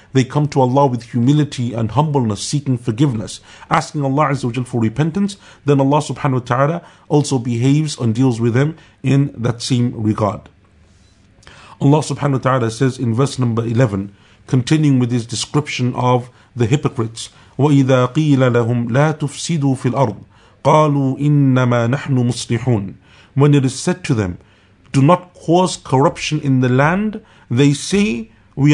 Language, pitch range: English, 120-155 Hz